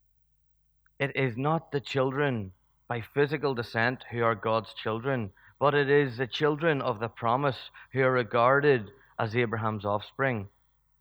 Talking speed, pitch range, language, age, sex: 140 wpm, 115-140 Hz, English, 30-49, male